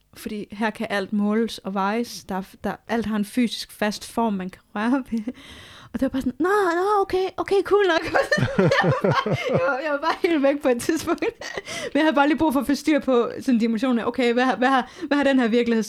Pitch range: 200-245 Hz